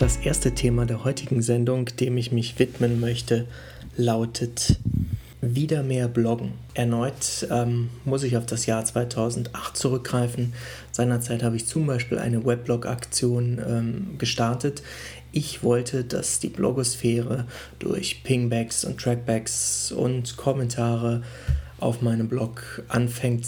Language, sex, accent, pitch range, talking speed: German, male, German, 115-125 Hz, 120 wpm